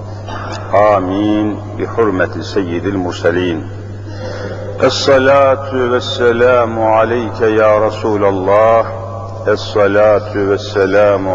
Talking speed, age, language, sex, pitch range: 65 wpm, 50-69, Turkish, male, 100-110 Hz